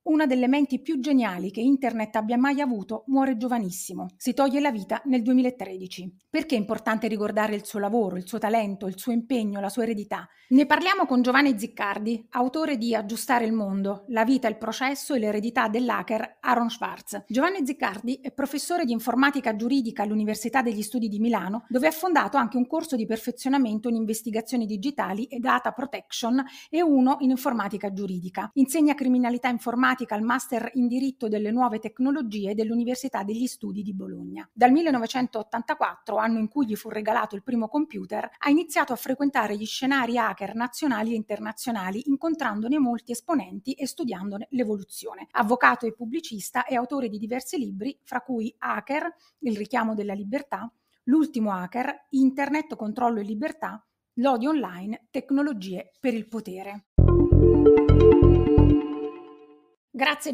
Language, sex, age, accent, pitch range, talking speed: Italian, female, 30-49, native, 215-270 Hz, 155 wpm